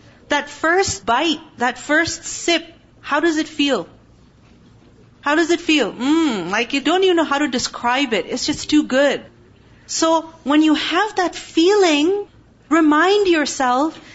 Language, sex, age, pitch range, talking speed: English, female, 40-59, 250-325 Hz, 155 wpm